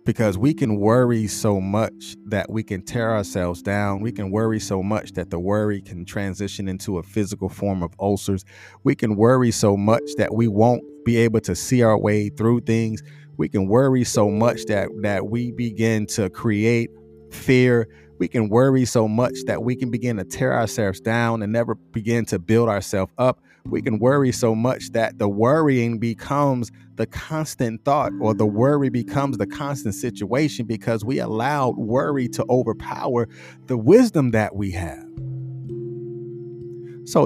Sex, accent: male, American